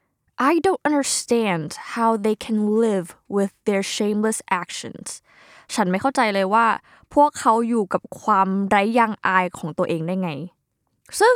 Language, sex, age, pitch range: Thai, female, 20-39, 185-245 Hz